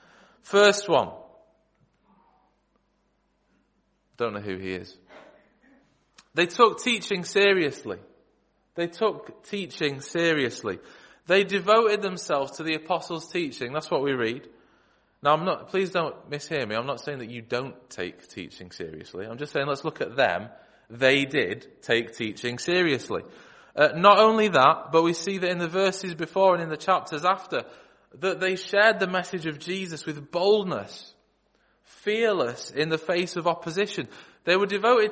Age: 20-39